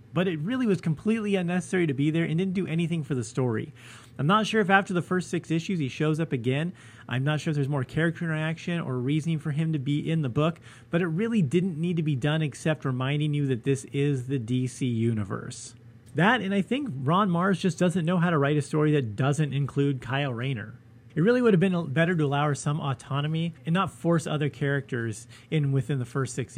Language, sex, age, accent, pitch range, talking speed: English, male, 30-49, American, 130-180 Hz, 235 wpm